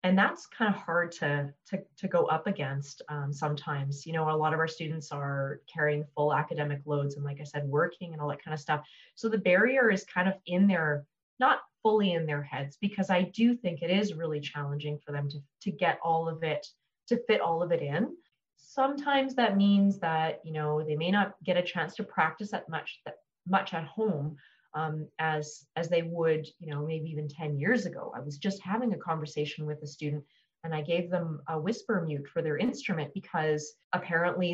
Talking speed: 215 wpm